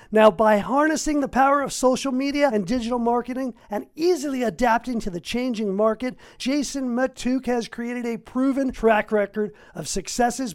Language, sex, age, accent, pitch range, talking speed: English, male, 50-69, American, 190-235 Hz, 160 wpm